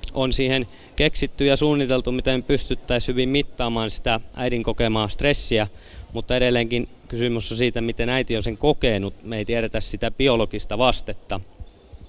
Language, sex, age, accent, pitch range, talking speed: Finnish, male, 20-39, native, 100-130 Hz, 145 wpm